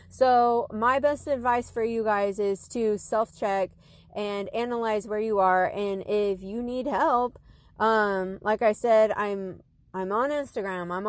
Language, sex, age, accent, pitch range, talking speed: English, female, 20-39, American, 200-250 Hz, 155 wpm